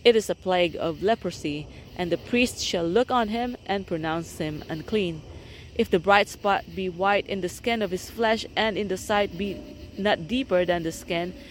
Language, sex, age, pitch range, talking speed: English, female, 30-49, 170-205 Hz, 205 wpm